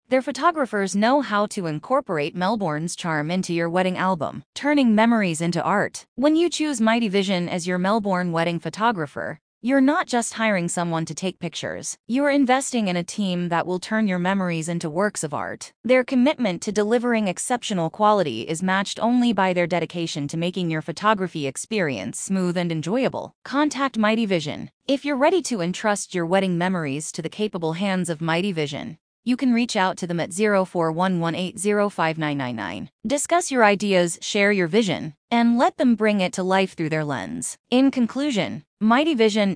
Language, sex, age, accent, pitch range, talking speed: English, female, 20-39, American, 170-230 Hz, 175 wpm